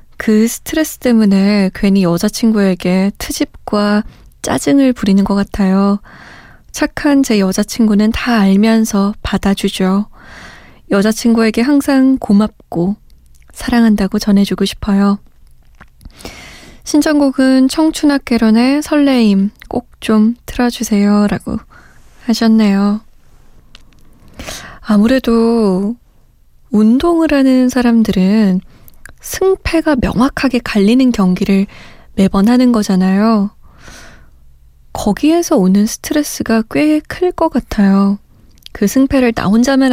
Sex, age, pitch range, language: female, 20-39, 200-245 Hz, Korean